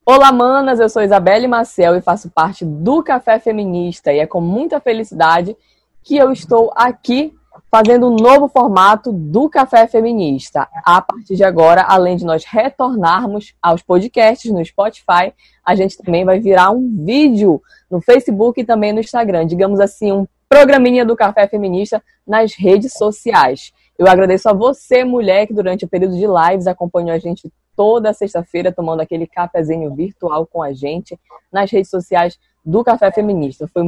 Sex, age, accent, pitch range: female, 20-39, Brazilian, 180-235 Hz